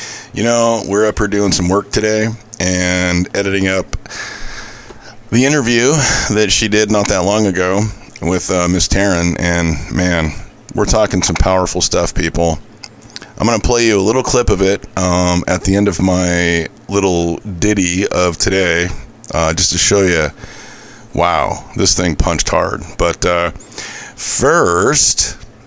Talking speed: 155 wpm